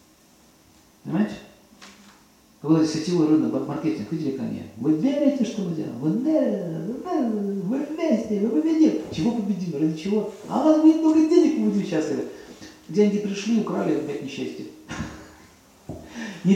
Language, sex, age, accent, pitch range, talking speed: Russian, male, 40-59, native, 155-205 Hz, 130 wpm